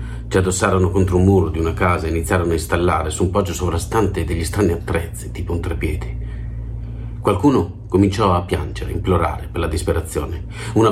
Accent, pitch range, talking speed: native, 85-100 Hz, 170 wpm